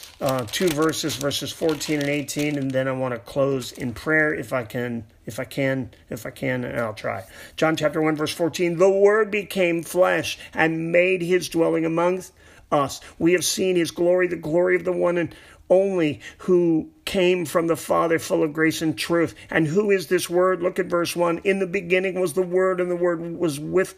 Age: 40-59